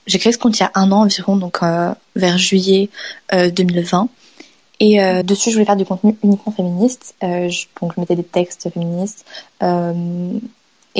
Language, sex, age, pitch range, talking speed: French, female, 20-39, 180-210 Hz, 190 wpm